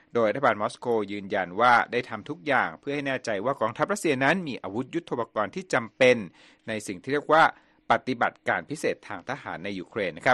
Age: 60-79